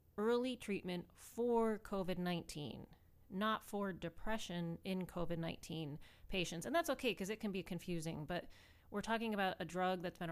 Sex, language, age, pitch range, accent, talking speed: female, English, 30-49, 170-210 Hz, American, 150 wpm